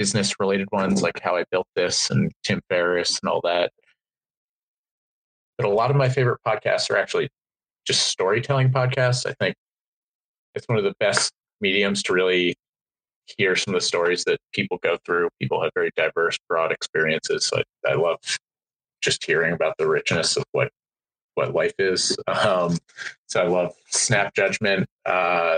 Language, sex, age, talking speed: English, male, 30-49, 170 wpm